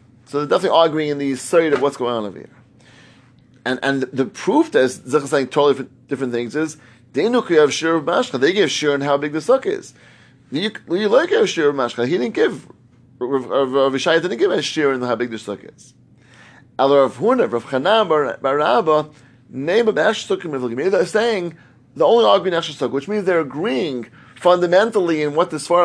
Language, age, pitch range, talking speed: English, 30-49, 125-170 Hz, 180 wpm